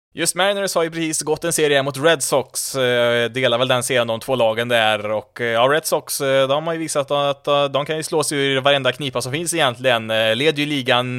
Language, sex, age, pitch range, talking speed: Swedish, male, 20-39, 125-150 Hz, 235 wpm